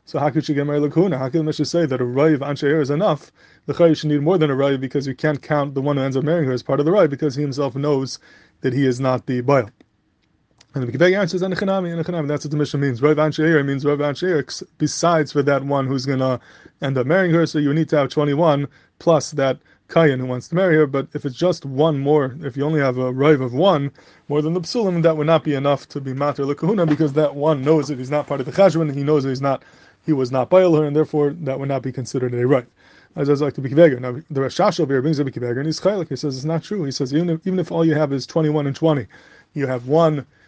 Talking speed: 270 wpm